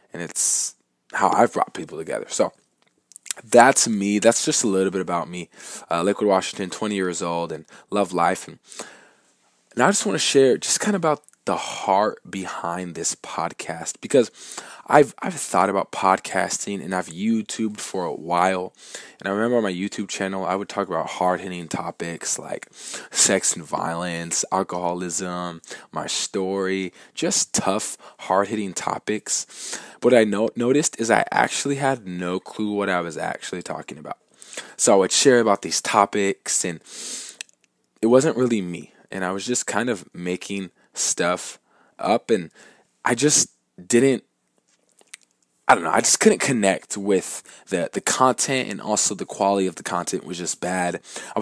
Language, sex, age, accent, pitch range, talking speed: English, male, 20-39, American, 90-110 Hz, 165 wpm